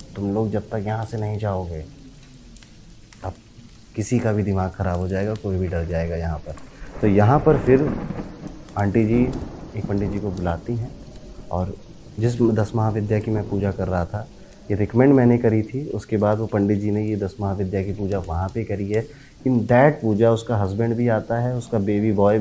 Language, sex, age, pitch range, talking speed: Hindi, male, 30-49, 100-130 Hz, 200 wpm